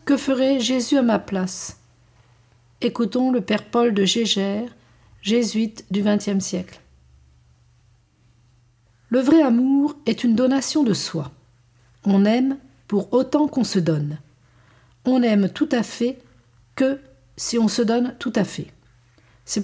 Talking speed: 140 wpm